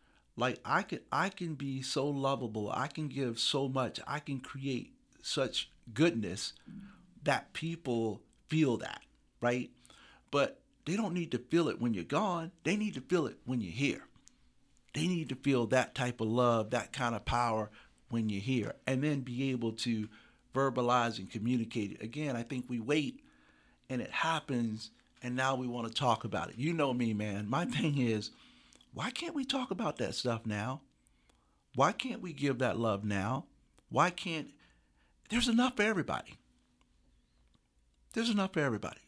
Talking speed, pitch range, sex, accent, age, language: 170 wpm, 120-150 Hz, male, American, 50-69, English